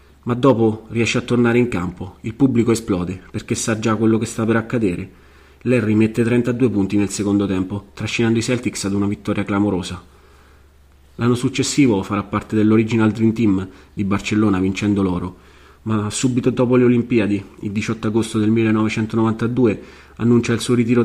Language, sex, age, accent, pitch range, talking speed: Italian, male, 30-49, native, 95-115 Hz, 165 wpm